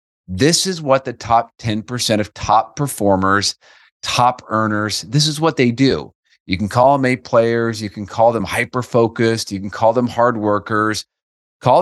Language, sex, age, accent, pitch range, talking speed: English, male, 30-49, American, 100-125 Hz, 175 wpm